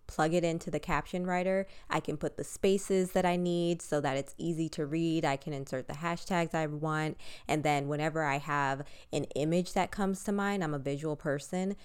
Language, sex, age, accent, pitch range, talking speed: English, female, 20-39, American, 140-170 Hz, 215 wpm